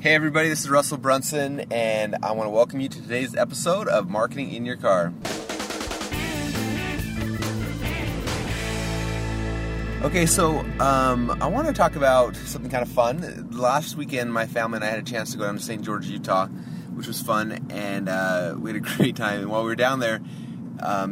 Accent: American